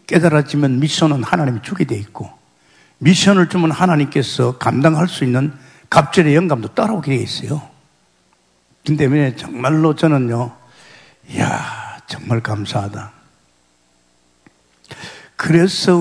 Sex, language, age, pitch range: male, Korean, 60-79, 105-160 Hz